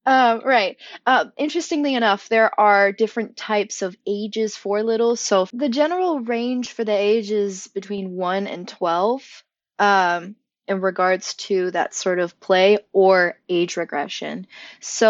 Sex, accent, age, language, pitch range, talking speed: female, American, 20-39, English, 175-220 Hz, 145 wpm